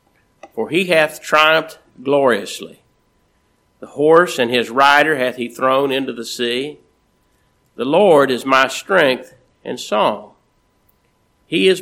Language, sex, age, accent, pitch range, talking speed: English, male, 50-69, American, 120-150 Hz, 125 wpm